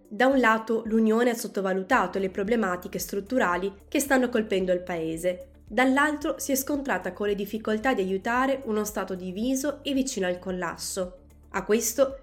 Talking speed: 155 wpm